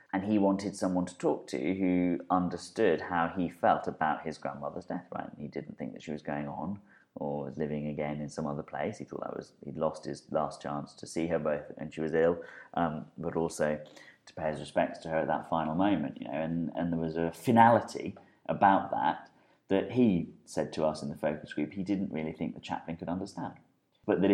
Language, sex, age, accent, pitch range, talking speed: English, male, 30-49, British, 70-90 Hz, 230 wpm